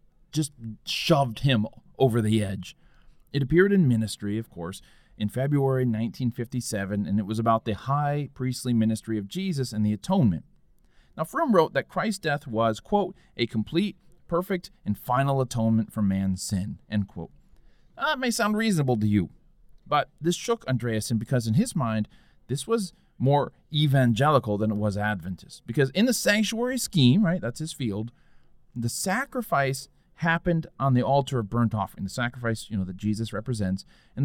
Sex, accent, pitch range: male, American, 110-160 Hz